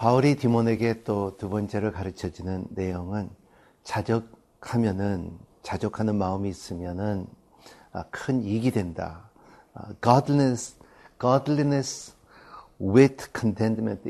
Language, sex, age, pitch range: Korean, male, 50-69, 100-135 Hz